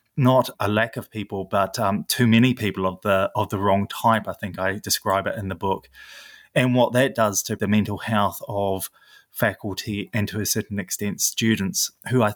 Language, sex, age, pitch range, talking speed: English, male, 20-39, 95-115 Hz, 205 wpm